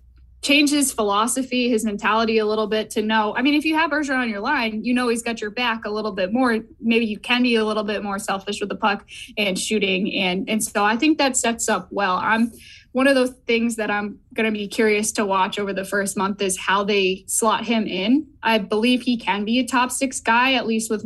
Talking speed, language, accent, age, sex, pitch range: 245 wpm, English, American, 10-29, female, 205-245 Hz